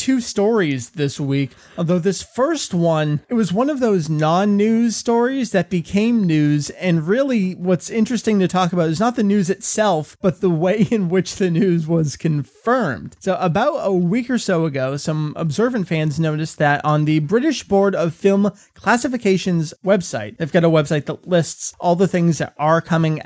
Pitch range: 150-200 Hz